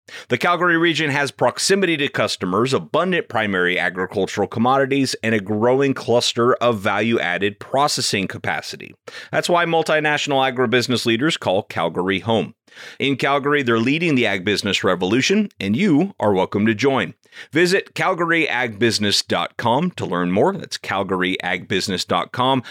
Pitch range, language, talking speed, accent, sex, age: 100-145 Hz, English, 125 wpm, American, male, 30-49